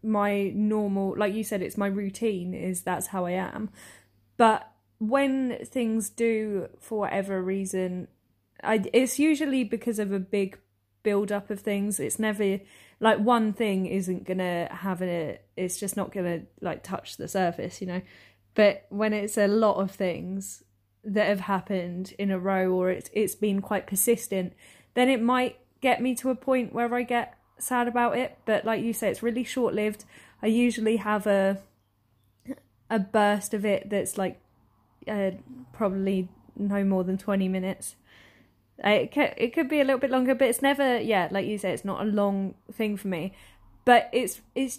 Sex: female